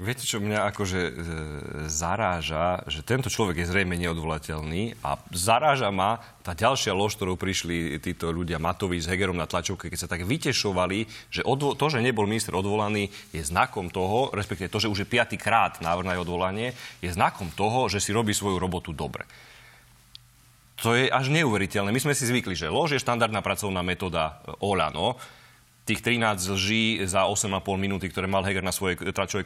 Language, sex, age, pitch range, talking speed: Slovak, male, 30-49, 95-120 Hz, 180 wpm